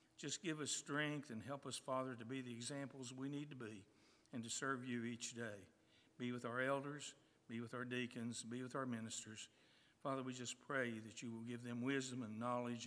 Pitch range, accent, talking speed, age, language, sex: 115-135 Hz, American, 215 wpm, 60-79, English, male